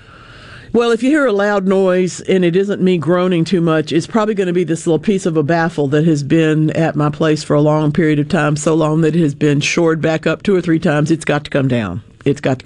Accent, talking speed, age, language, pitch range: American, 275 wpm, 60-79, English, 145-185 Hz